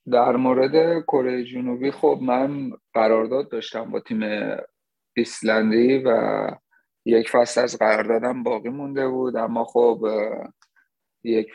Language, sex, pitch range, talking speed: English, male, 110-130 Hz, 115 wpm